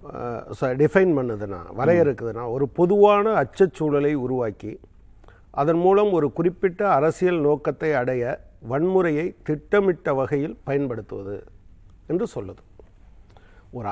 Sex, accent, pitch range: male, native, 105-170 Hz